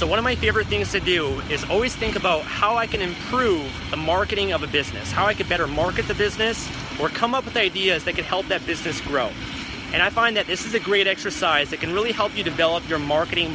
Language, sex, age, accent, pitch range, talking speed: English, male, 30-49, American, 155-195 Hz, 250 wpm